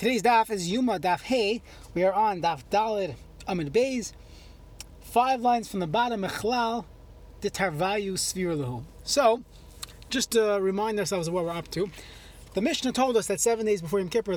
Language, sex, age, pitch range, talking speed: English, male, 30-49, 175-225 Hz, 170 wpm